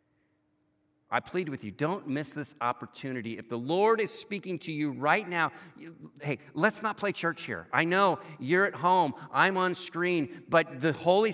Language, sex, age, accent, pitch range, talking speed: English, male, 50-69, American, 150-195 Hz, 180 wpm